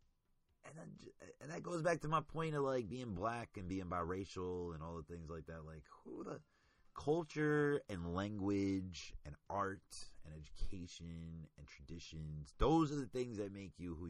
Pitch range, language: 75-90 Hz, English